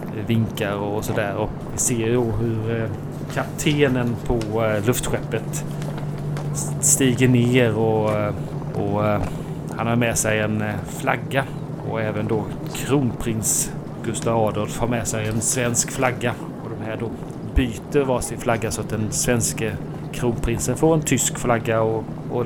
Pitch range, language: 110-135 Hz, Swedish